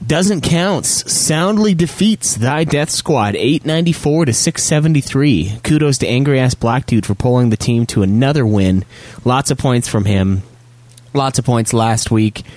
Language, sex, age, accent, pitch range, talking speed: English, male, 30-49, American, 100-125 Hz, 150 wpm